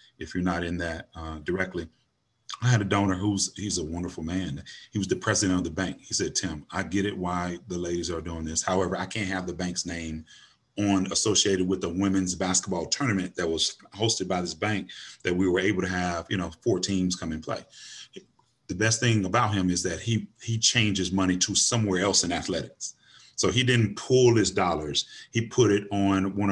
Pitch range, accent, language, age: 90-105 Hz, American, English, 30-49